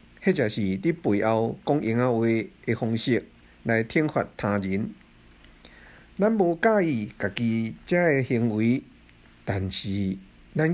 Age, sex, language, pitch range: 50-69, male, Chinese, 110-165 Hz